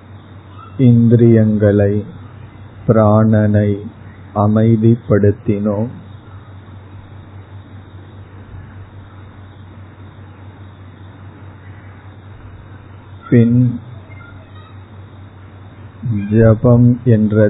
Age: 50-69